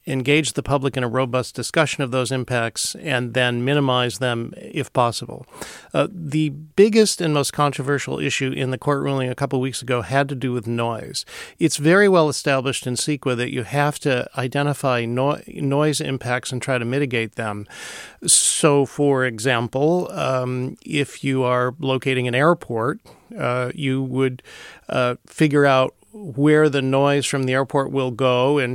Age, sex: 40-59, male